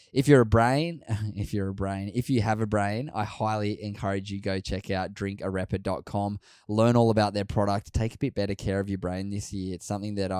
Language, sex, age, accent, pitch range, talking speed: English, male, 10-29, Australian, 100-115 Hz, 225 wpm